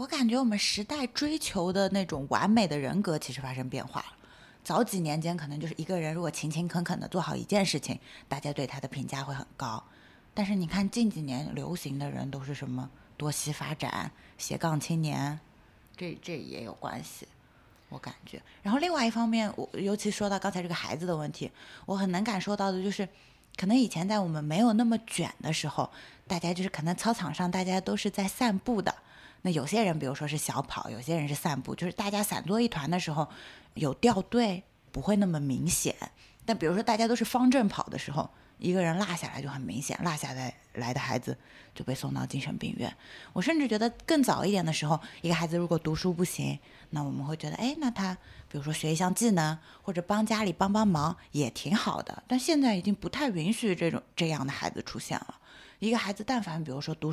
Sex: female